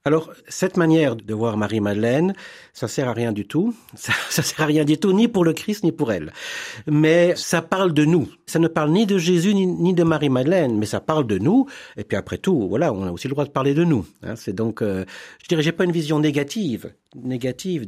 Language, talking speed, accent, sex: French, 240 wpm, French, male